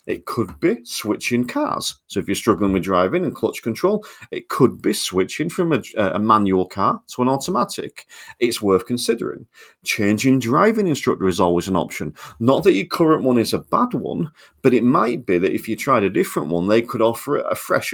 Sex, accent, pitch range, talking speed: male, British, 100-145 Hz, 205 wpm